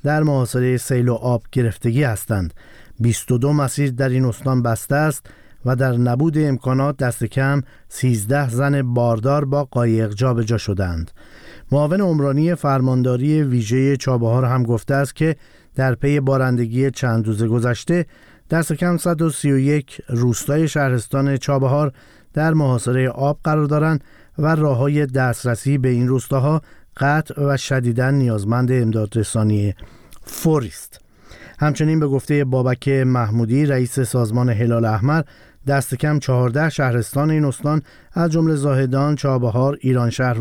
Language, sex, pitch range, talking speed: Persian, male, 120-145 Hz, 125 wpm